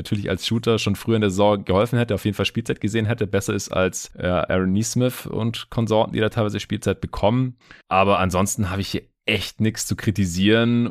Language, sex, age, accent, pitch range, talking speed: German, male, 20-39, German, 90-110 Hz, 205 wpm